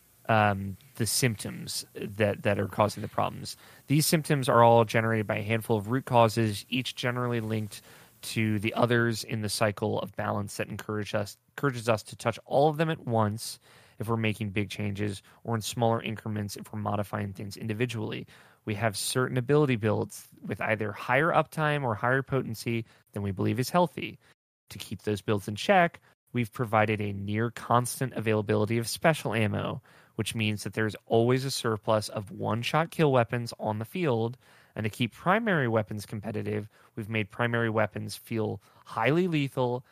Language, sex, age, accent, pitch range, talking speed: English, male, 20-39, American, 105-130 Hz, 170 wpm